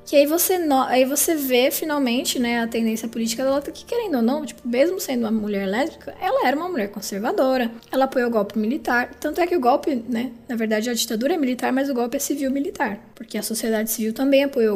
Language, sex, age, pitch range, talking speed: Portuguese, female, 10-29, 220-275 Hz, 230 wpm